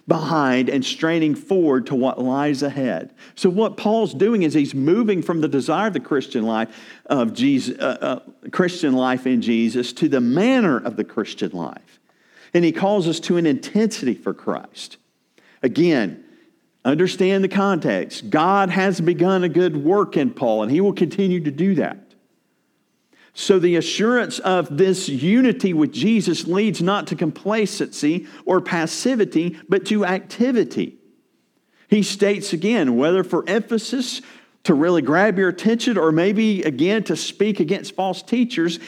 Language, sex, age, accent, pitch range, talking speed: English, male, 50-69, American, 160-220 Hz, 155 wpm